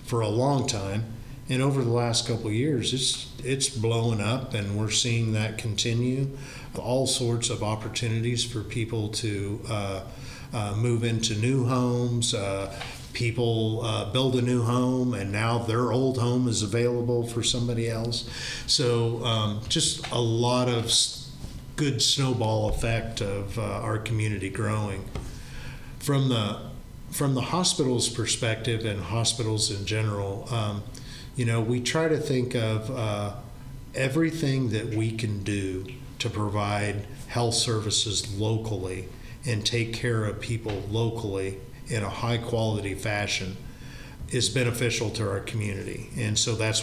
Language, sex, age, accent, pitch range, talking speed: English, male, 50-69, American, 110-125 Hz, 140 wpm